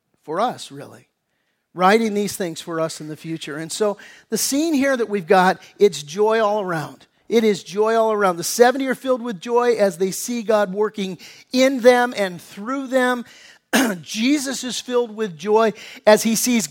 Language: English